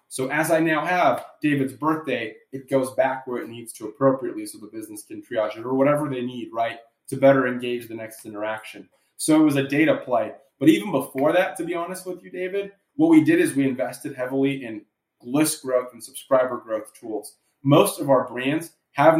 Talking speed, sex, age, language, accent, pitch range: 210 wpm, male, 20-39, English, American, 125-155 Hz